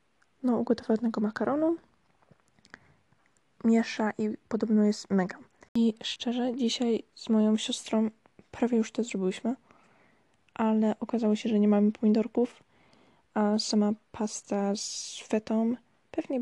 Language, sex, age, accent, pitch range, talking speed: Polish, female, 20-39, native, 210-235 Hz, 115 wpm